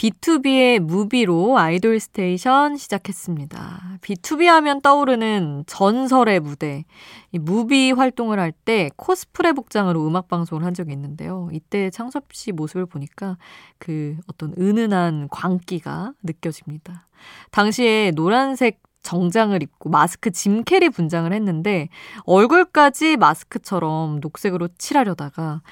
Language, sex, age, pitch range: Korean, female, 20-39, 165-225 Hz